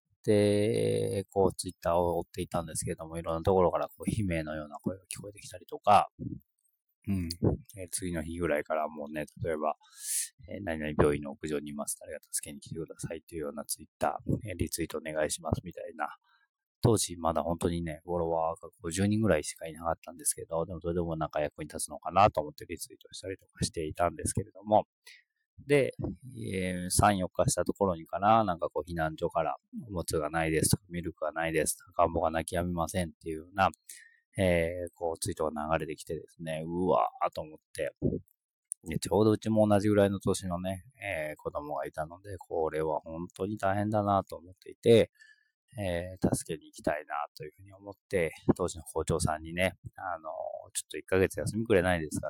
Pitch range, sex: 80-105 Hz, male